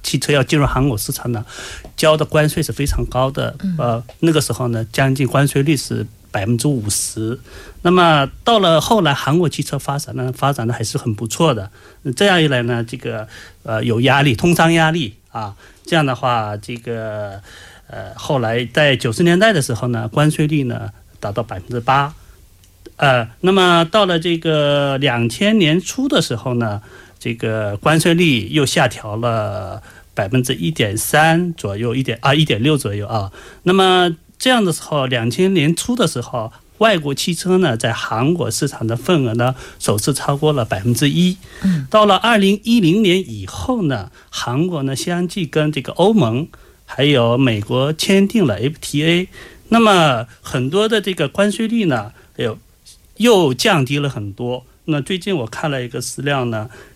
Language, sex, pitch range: Korean, male, 115-165 Hz